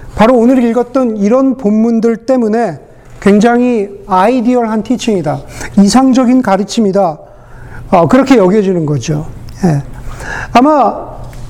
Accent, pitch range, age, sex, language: native, 175-245 Hz, 40-59, male, Korean